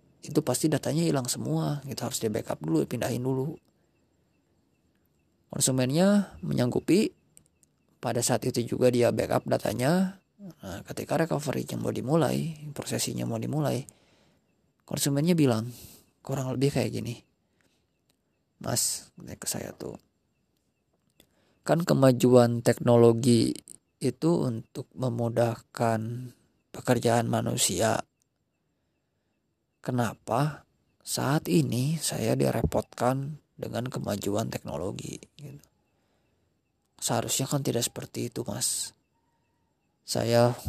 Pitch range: 115-140 Hz